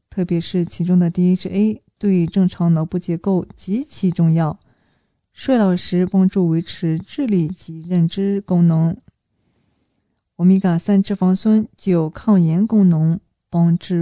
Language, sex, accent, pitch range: Chinese, female, native, 165-200 Hz